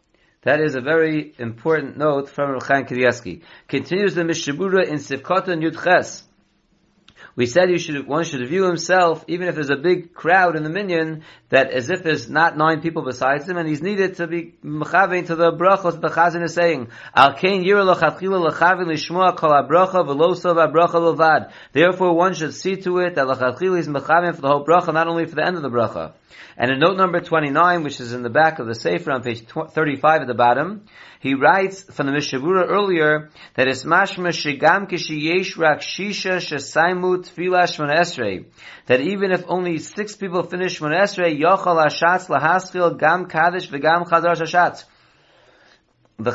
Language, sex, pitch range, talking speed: English, male, 150-180 Hz, 165 wpm